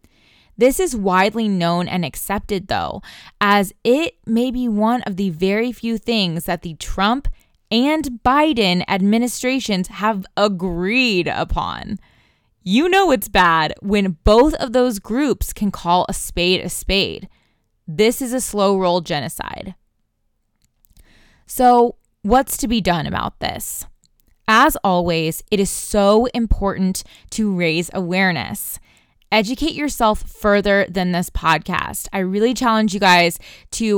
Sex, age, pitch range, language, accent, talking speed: female, 20-39, 185-235 Hz, English, American, 130 wpm